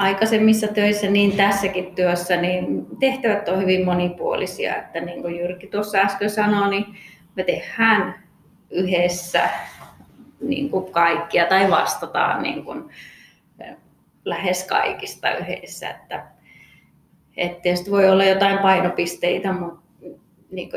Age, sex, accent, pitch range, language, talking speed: 20-39, female, native, 180-220 Hz, Finnish, 105 wpm